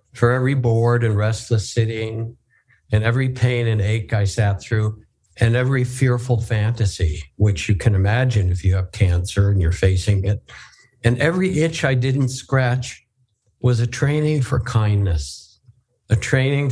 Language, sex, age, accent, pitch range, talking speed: English, male, 60-79, American, 100-125 Hz, 155 wpm